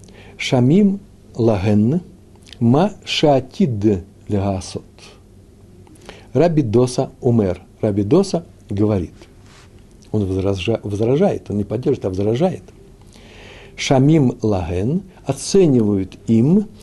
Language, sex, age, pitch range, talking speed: Russian, male, 60-79, 100-160 Hz, 80 wpm